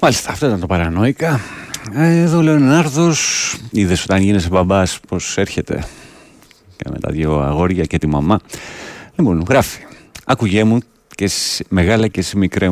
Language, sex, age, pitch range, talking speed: Greek, male, 40-59, 75-95 Hz, 145 wpm